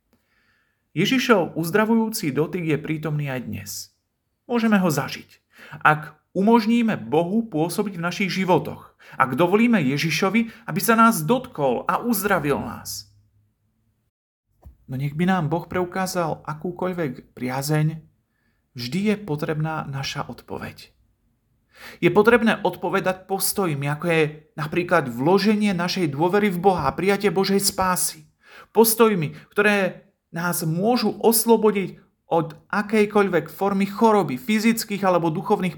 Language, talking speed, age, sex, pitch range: Slovak, 110 wpm, 40-59, male, 140-195 Hz